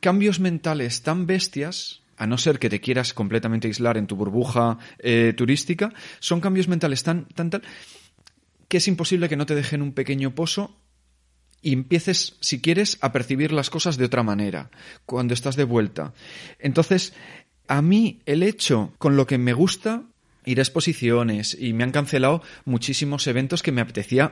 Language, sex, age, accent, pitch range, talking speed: Spanish, male, 30-49, Spanish, 125-180 Hz, 175 wpm